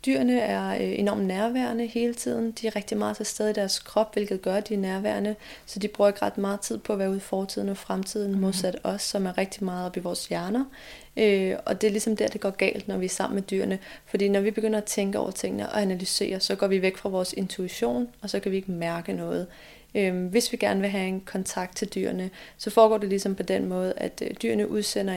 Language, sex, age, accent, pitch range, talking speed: Danish, female, 30-49, native, 185-215 Hz, 245 wpm